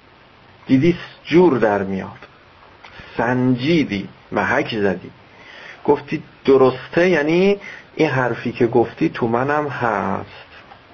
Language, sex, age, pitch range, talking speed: Persian, male, 50-69, 95-145 Hz, 95 wpm